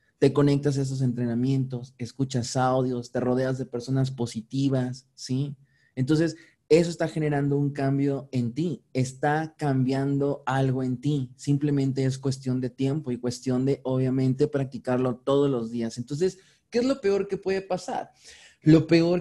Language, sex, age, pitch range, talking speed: Spanish, male, 30-49, 130-160 Hz, 155 wpm